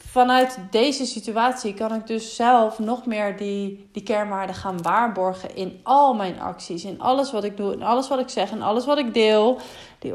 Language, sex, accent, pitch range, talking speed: Dutch, female, Dutch, 195-245 Hz, 200 wpm